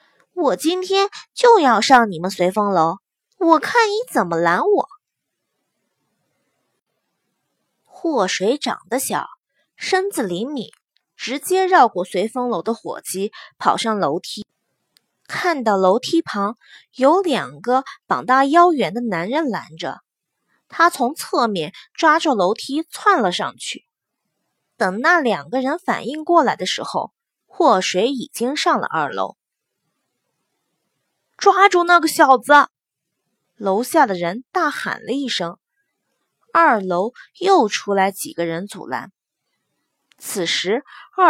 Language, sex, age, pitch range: Chinese, female, 20-39, 205-340 Hz